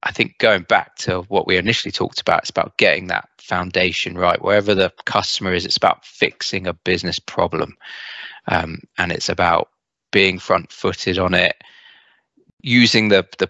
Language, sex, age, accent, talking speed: English, male, 20-39, British, 170 wpm